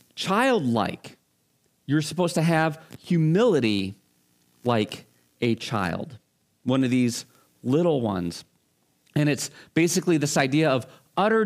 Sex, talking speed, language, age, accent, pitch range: male, 110 wpm, English, 40-59, American, 120-155 Hz